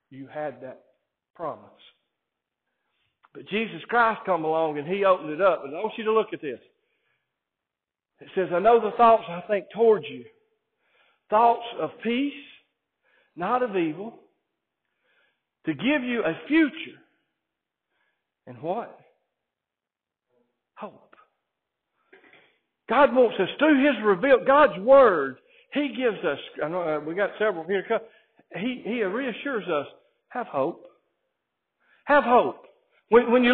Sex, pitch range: male, 170-275 Hz